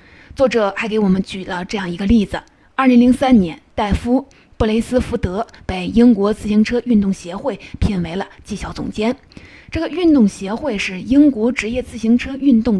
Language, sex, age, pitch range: Chinese, female, 20-39, 200-255 Hz